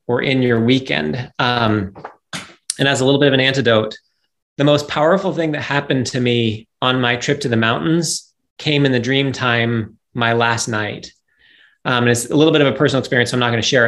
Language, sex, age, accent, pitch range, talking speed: English, male, 30-49, American, 120-145 Hz, 215 wpm